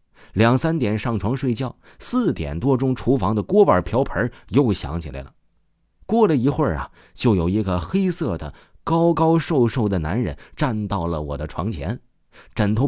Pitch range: 85-125 Hz